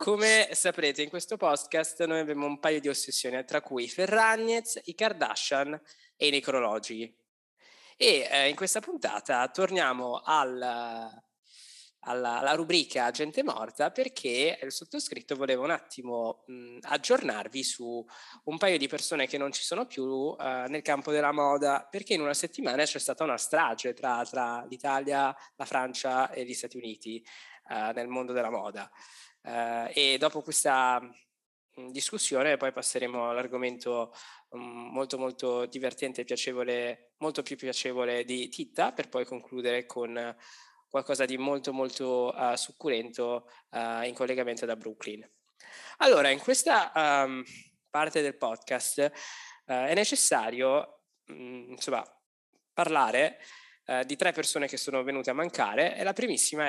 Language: Italian